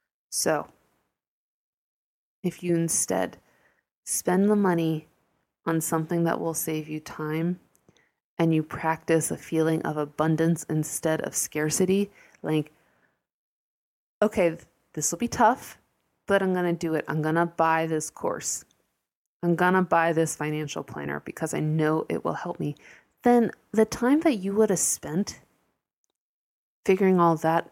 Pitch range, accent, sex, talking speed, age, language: 165-240 Hz, American, female, 145 wpm, 20-39, English